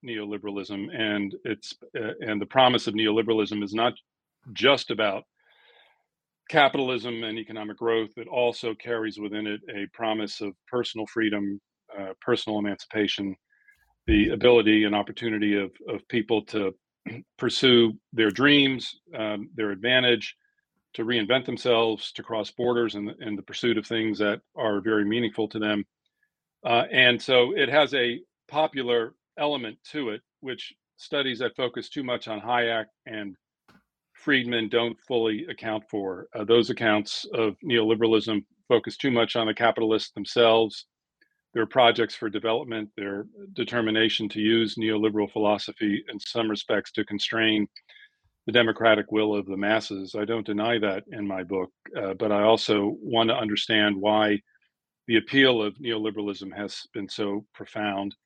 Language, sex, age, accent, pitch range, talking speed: English, male, 40-59, American, 105-115 Hz, 145 wpm